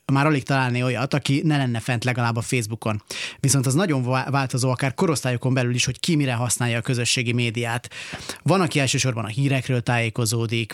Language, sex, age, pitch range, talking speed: Hungarian, male, 30-49, 125-140 Hz, 180 wpm